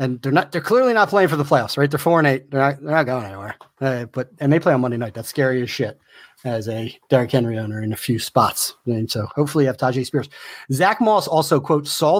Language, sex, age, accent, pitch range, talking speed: English, male, 30-49, American, 115-145 Hz, 255 wpm